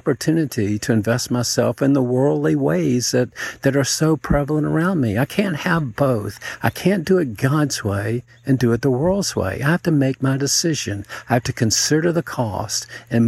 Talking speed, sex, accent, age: 200 wpm, male, American, 50-69